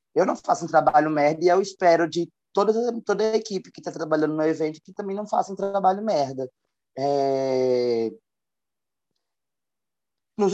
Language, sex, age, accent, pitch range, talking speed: Portuguese, male, 20-39, Brazilian, 130-170 Hz, 160 wpm